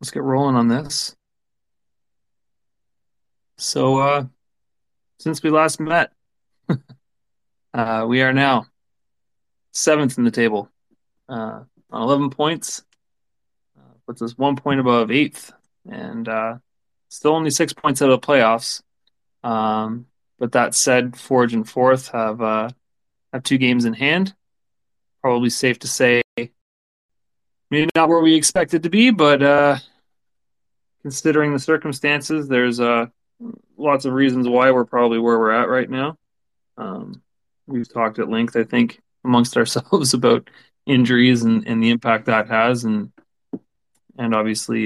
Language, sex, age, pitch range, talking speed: English, male, 30-49, 110-135 Hz, 140 wpm